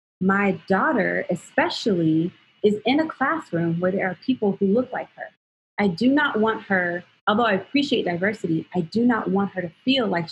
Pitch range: 175-220 Hz